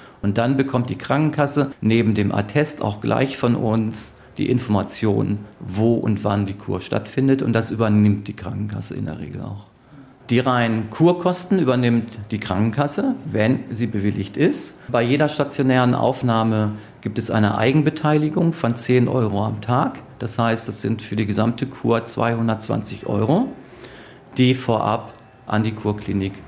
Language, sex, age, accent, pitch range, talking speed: German, male, 40-59, German, 105-130 Hz, 150 wpm